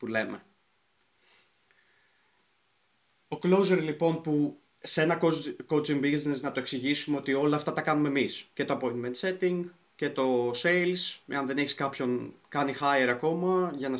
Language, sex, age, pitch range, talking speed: Greek, male, 20-39, 125-160 Hz, 150 wpm